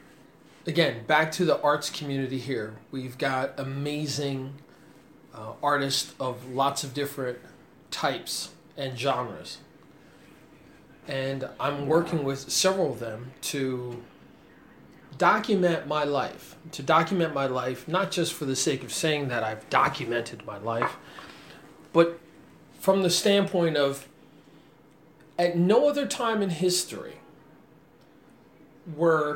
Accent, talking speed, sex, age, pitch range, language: American, 120 wpm, male, 40-59, 135-170 Hz, English